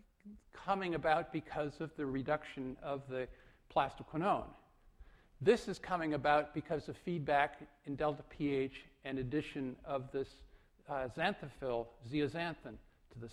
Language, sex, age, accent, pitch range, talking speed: English, male, 50-69, American, 135-165 Hz, 125 wpm